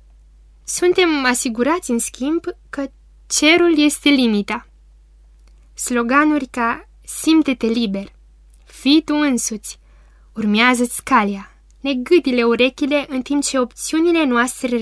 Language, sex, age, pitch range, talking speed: Romanian, female, 20-39, 205-270 Hz, 95 wpm